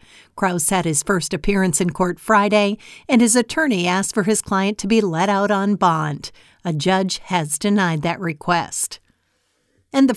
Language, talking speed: English, 170 wpm